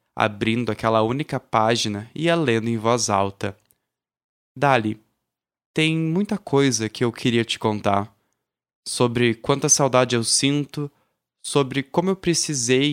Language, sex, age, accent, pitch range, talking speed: Portuguese, male, 20-39, Brazilian, 110-140 Hz, 130 wpm